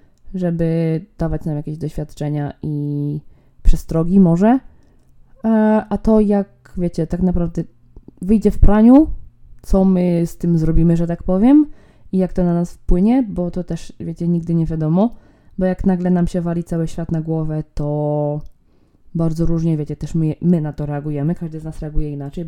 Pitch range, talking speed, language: 155-180 Hz, 170 wpm, Polish